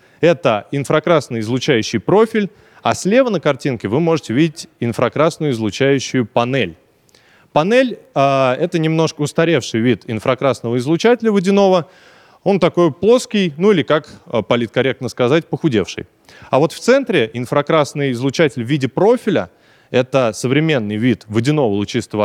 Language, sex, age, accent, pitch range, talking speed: Russian, male, 20-39, native, 120-170 Hz, 120 wpm